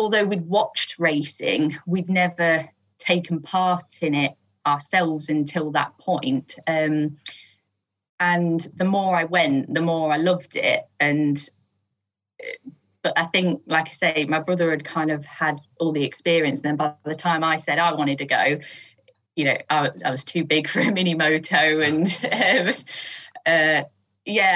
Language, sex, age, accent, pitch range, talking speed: English, female, 20-39, British, 150-180 Hz, 160 wpm